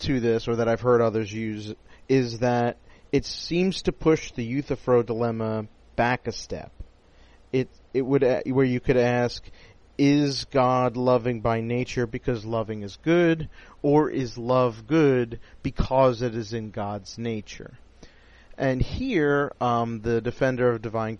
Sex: male